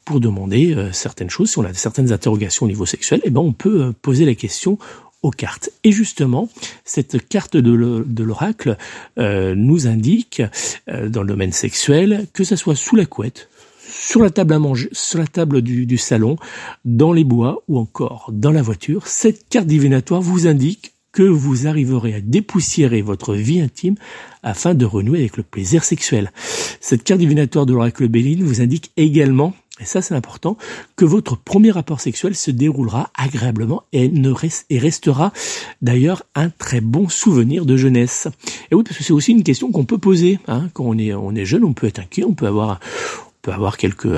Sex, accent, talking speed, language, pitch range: male, French, 200 wpm, French, 115-170 Hz